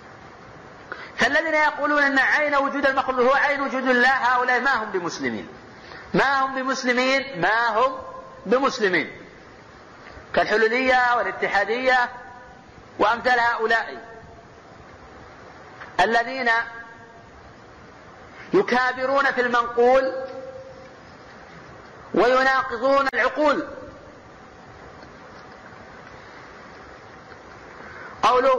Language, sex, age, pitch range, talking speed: Arabic, male, 50-69, 220-260 Hz, 65 wpm